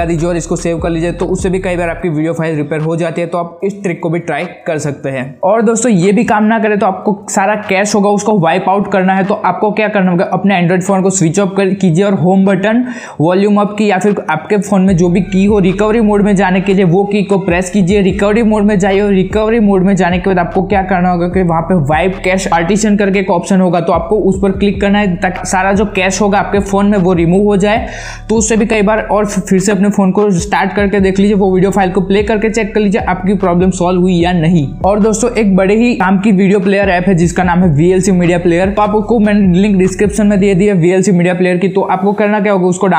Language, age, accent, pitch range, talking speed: Hindi, 20-39, native, 185-205 Hz, 110 wpm